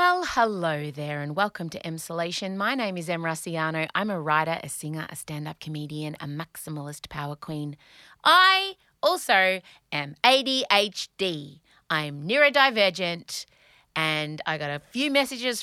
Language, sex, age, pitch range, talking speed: English, female, 30-49, 155-225 Hz, 140 wpm